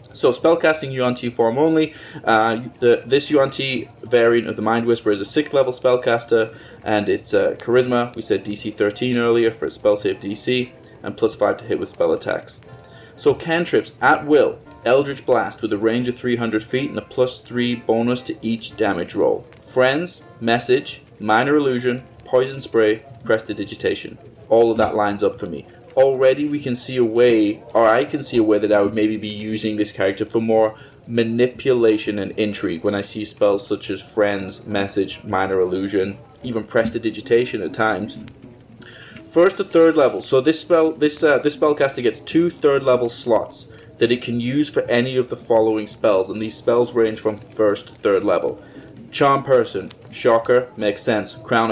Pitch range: 110-135 Hz